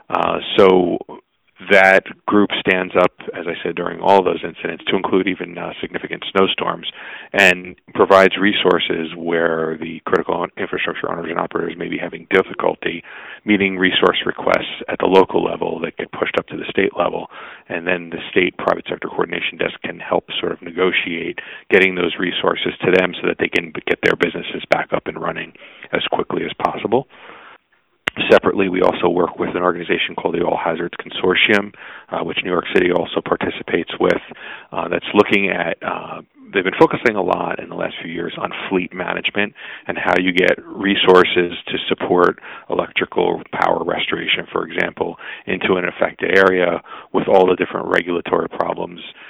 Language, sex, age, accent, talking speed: English, male, 40-59, American, 170 wpm